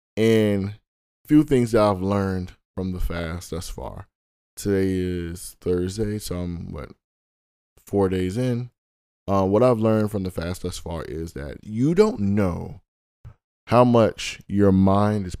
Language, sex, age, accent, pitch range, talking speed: English, male, 20-39, American, 85-105 Hz, 155 wpm